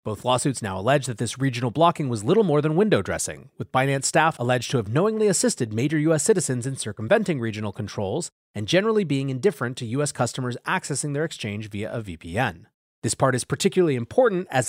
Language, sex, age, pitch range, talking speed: English, male, 30-49, 115-160 Hz, 195 wpm